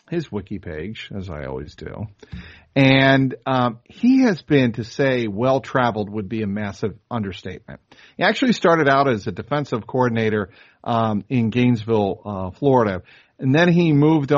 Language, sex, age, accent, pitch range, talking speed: English, male, 50-69, American, 105-135 Hz, 160 wpm